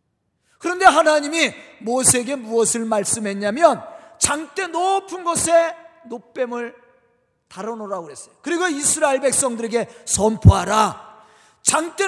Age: 40-59